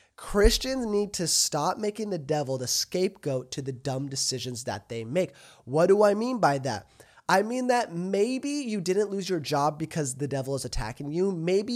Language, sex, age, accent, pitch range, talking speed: English, male, 20-39, American, 130-190 Hz, 195 wpm